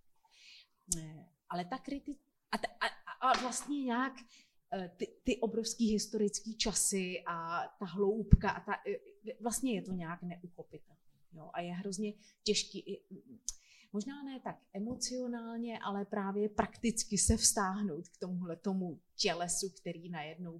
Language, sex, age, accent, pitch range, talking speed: Czech, female, 30-49, native, 175-240 Hz, 130 wpm